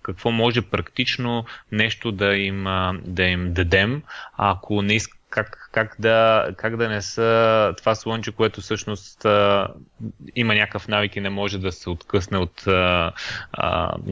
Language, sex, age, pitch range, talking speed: Bulgarian, male, 20-39, 95-110 Hz, 130 wpm